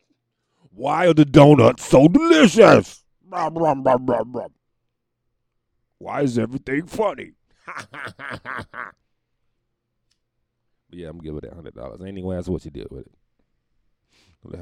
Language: English